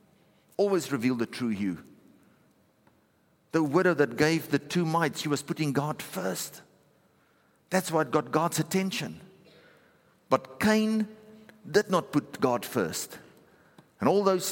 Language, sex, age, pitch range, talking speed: English, male, 50-69, 125-170 Hz, 135 wpm